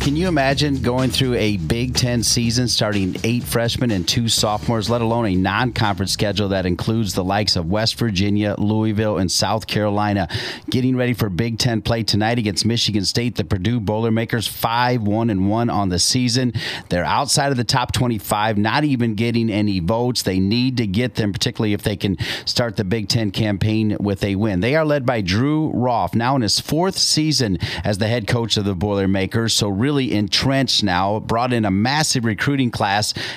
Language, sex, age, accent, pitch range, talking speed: English, male, 40-59, American, 105-125 Hz, 190 wpm